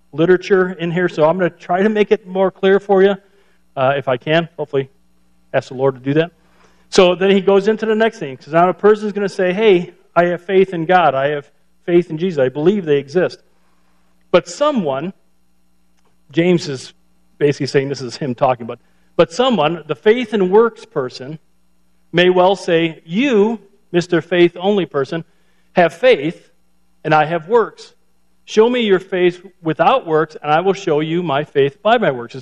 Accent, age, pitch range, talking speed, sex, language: American, 40-59, 130-195 Hz, 195 wpm, male, English